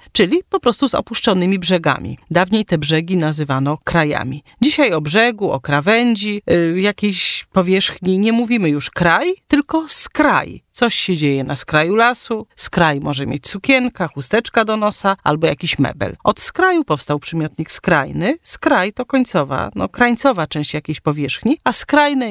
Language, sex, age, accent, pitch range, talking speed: Polish, female, 40-59, native, 155-240 Hz, 150 wpm